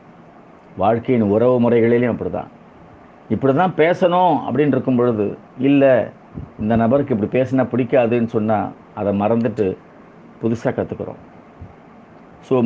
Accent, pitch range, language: native, 115-150 Hz, Tamil